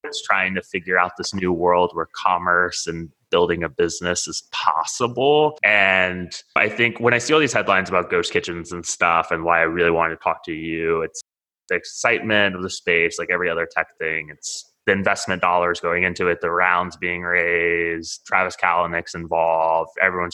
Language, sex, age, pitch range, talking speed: English, male, 20-39, 90-105 Hz, 190 wpm